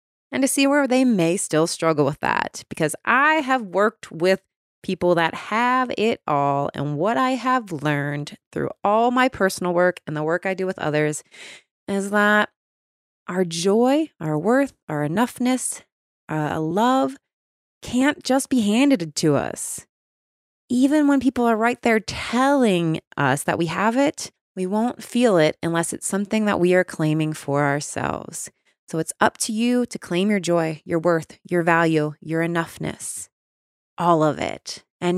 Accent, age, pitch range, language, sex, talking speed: American, 30-49, 160-245 Hz, English, female, 165 wpm